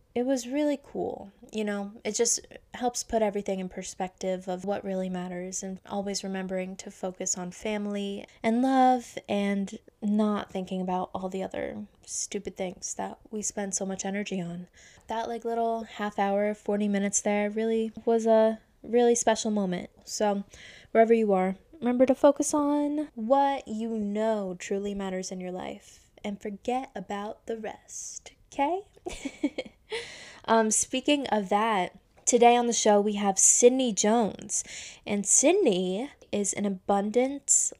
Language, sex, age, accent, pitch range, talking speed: English, female, 20-39, American, 200-240 Hz, 150 wpm